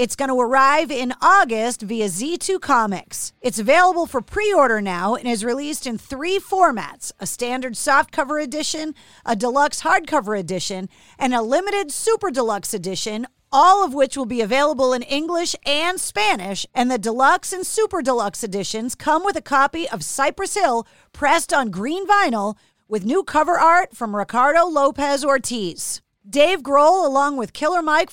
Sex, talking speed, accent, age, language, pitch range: female, 160 wpm, American, 40-59, English, 230-305 Hz